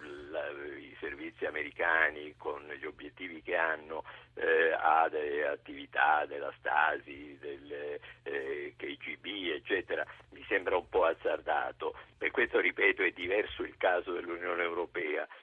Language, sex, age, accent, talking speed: Italian, male, 50-69, native, 125 wpm